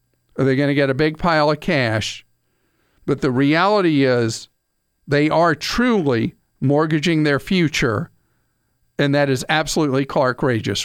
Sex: male